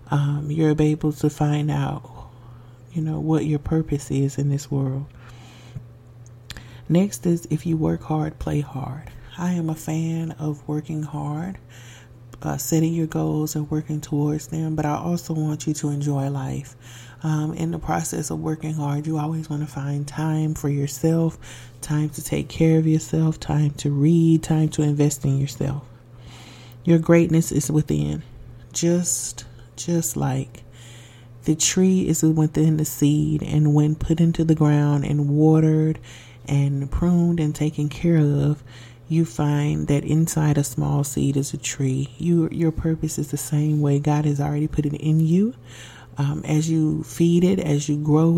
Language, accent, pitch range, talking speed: English, American, 130-160 Hz, 165 wpm